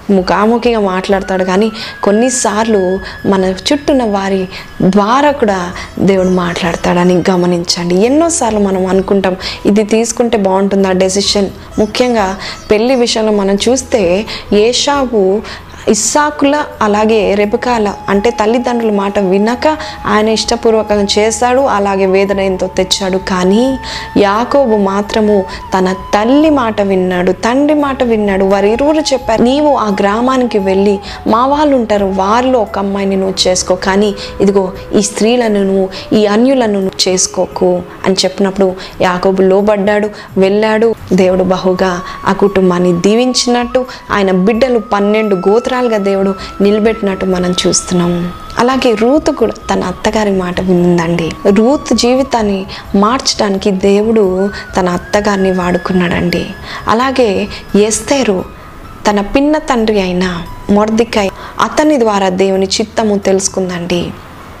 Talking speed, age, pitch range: 105 wpm, 20-39, 190-230 Hz